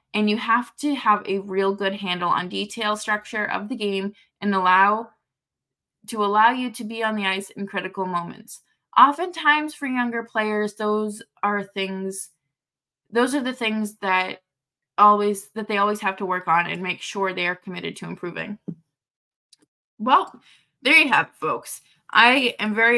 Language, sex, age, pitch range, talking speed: English, female, 20-39, 195-255 Hz, 165 wpm